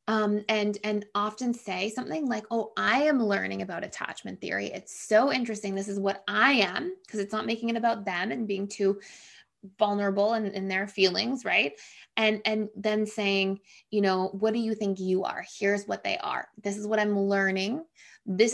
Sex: female